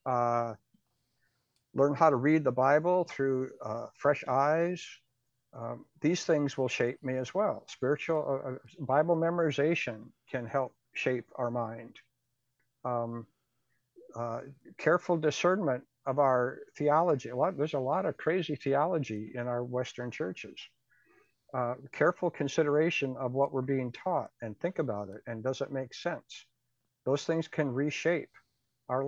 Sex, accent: male, American